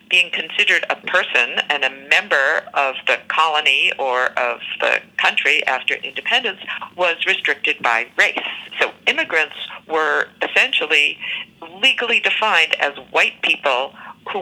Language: English